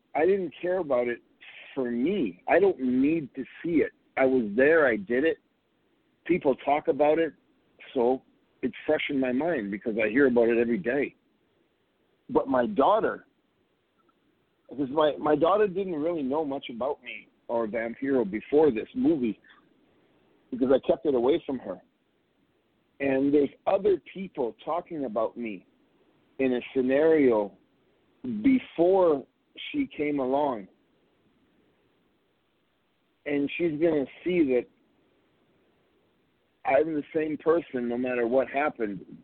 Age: 50-69